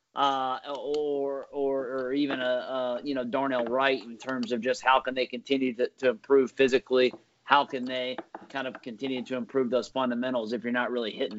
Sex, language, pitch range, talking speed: male, English, 125-145 Hz, 200 wpm